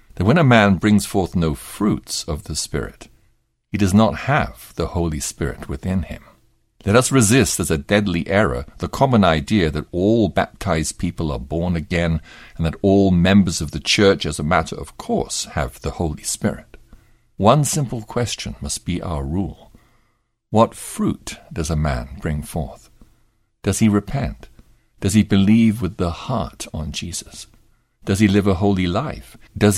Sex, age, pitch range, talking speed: male, 60-79, 80-110 Hz, 170 wpm